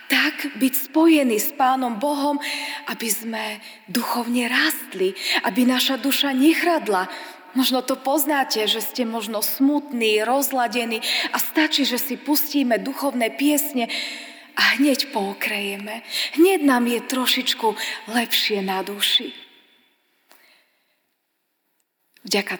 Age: 20-39